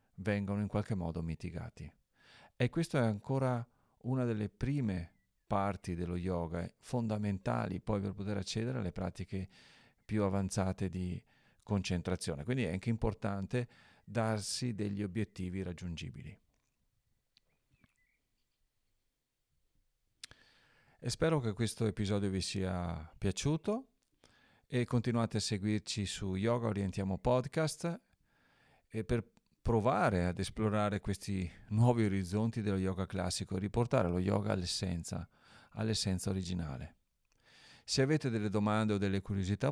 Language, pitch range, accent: Italian, 95-115 Hz, native